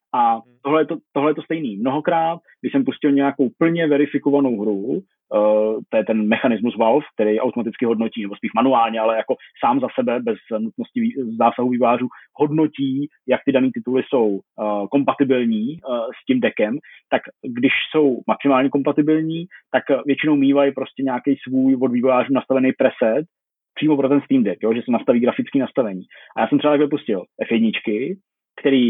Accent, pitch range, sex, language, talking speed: native, 120-145 Hz, male, Czech, 165 wpm